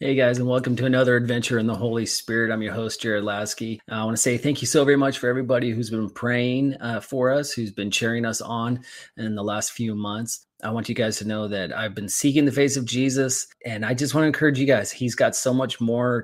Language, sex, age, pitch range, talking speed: English, male, 30-49, 110-130 Hz, 260 wpm